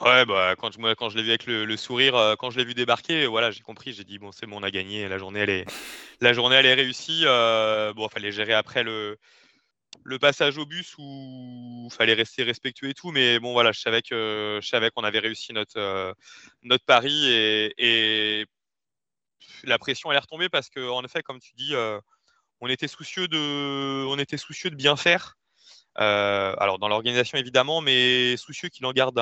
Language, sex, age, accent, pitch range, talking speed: French, male, 20-39, French, 115-145 Hz, 220 wpm